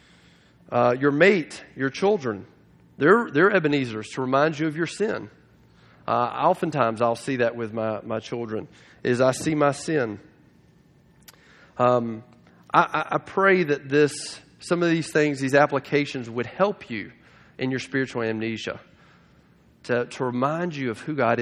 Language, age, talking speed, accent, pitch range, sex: English, 40-59, 150 wpm, American, 115-145 Hz, male